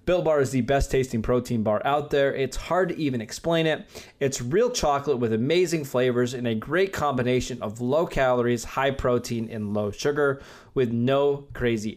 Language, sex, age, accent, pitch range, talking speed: English, male, 20-39, American, 120-145 Hz, 185 wpm